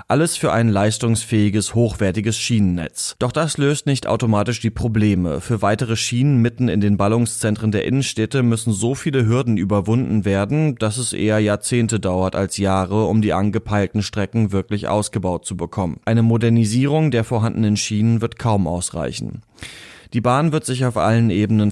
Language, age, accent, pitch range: German, 30-49, German, 105-120 Hz